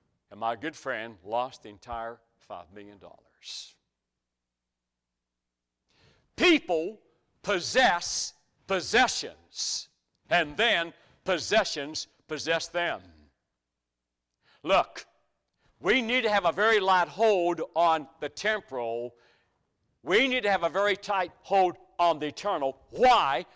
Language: English